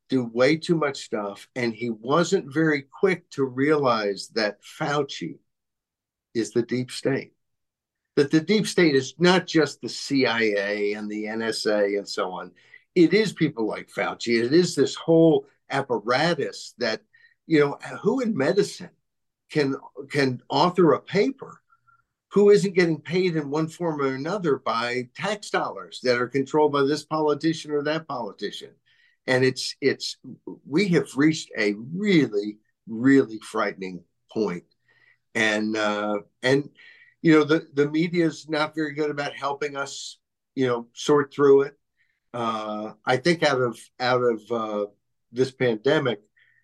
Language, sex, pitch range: English, male, 120-160 Hz